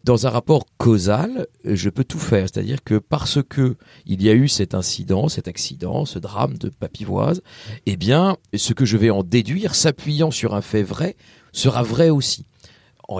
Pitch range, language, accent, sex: 115-155 Hz, French, French, male